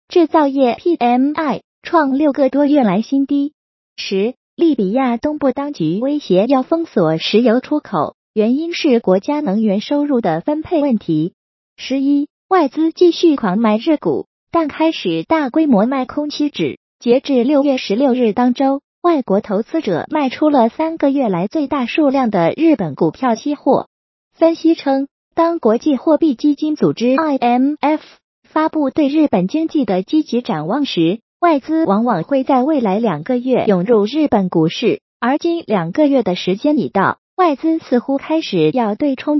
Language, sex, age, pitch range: Chinese, female, 20-39, 225-310 Hz